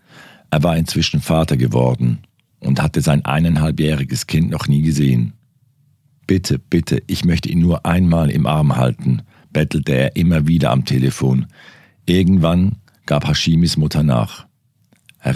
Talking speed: 135 wpm